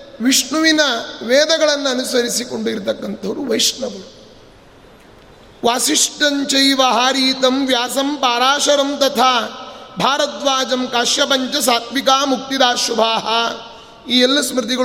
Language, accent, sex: Kannada, native, male